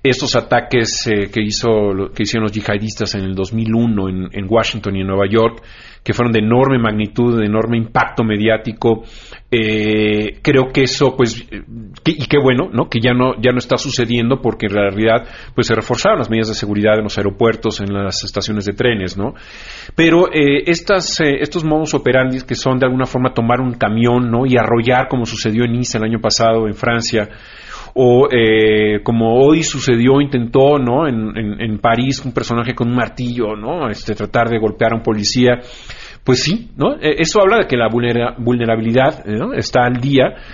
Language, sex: Spanish, male